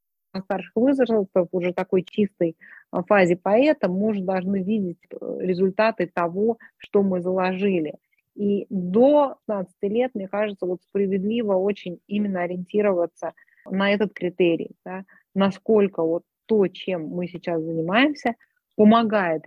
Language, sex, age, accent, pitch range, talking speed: Russian, female, 30-49, native, 180-220 Hz, 120 wpm